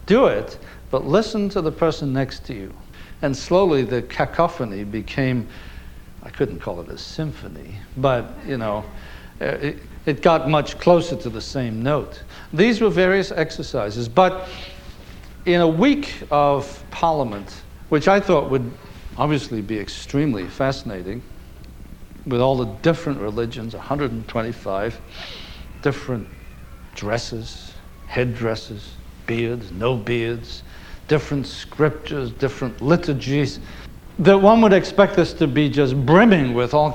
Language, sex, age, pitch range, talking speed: English, male, 60-79, 115-160 Hz, 125 wpm